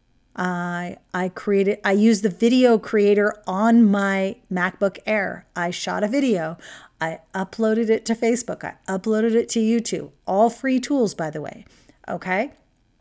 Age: 40-59